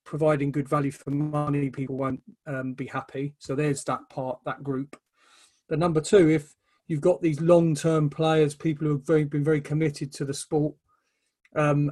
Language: English